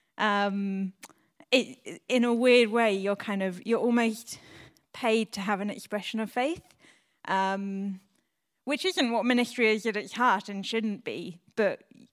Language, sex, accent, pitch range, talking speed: English, female, British, 195-225 Hz, 150 wpm